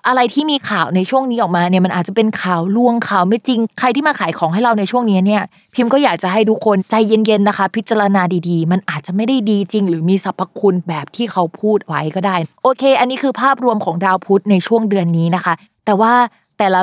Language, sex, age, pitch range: Thai, female, 20-39, 170-230 Hz